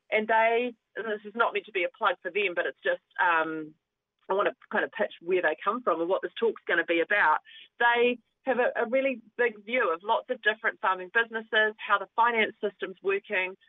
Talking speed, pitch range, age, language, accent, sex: 230 wpm, 180-235 Hz, 30-49, English, Australian, female